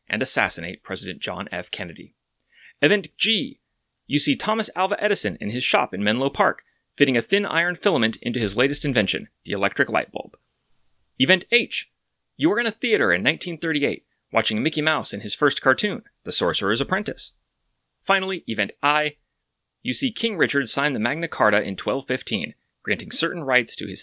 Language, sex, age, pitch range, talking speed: English, male, 30-49, 115-165 Hz, 170 wpm